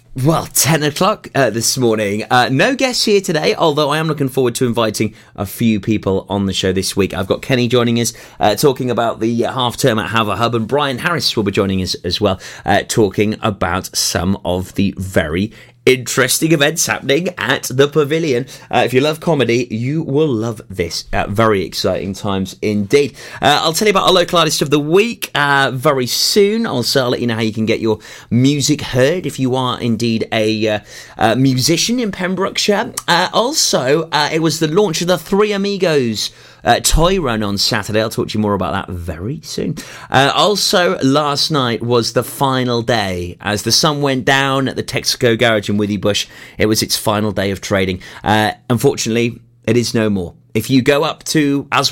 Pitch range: 105-140 Hz